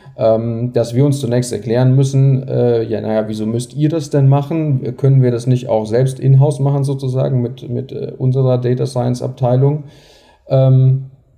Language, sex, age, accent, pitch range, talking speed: German, male, 40-59, German, 115-140 Hz, 170 wpm